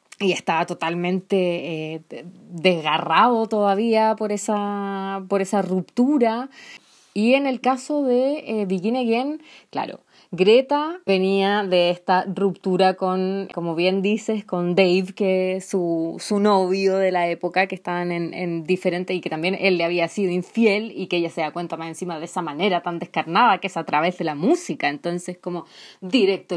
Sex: female